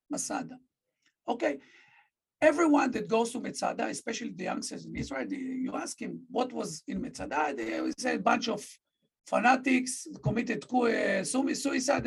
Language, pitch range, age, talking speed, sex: English, 225-275 Hz, 50-69, 140 wpm, male